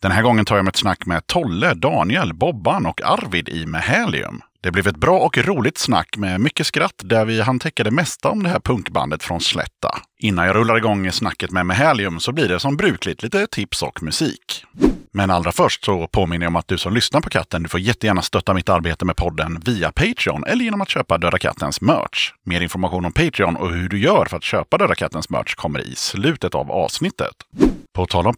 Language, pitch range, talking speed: Swedish, 85-120 Hz, 220 wpm